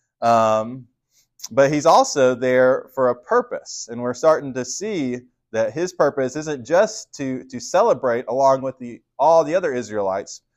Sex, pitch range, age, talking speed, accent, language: male, 125-170 Hz, 20-39, 160 wpm, American, English